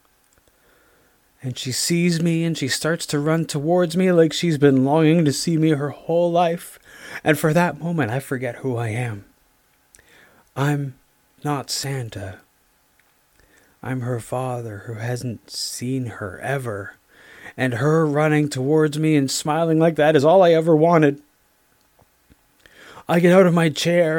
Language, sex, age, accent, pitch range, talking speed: English, male, 30-49, American, 130-165 Hz, 150 wpm